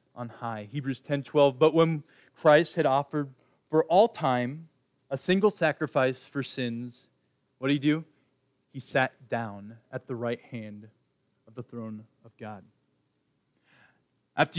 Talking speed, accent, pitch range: 145 wpm, American, 125-155 Hz